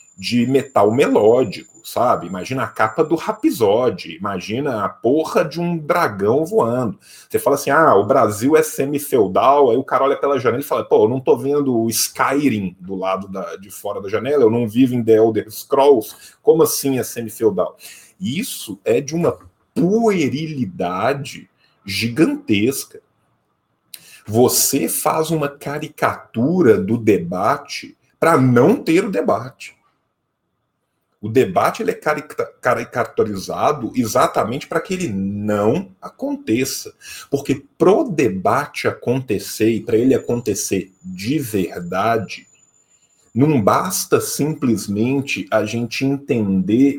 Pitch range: 110-170 Hz